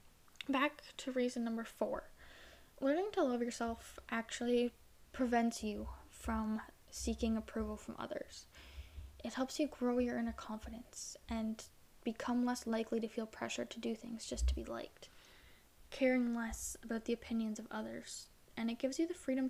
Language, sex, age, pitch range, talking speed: English, female, 10-29, 215-255 Hz, 155 wpm